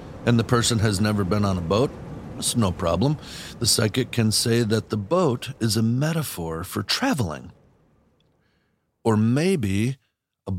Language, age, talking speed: English, 50-69, 155 wpm